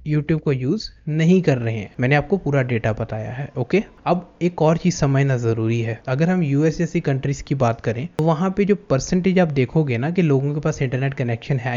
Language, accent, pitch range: Hindi, native, 135-165 Hz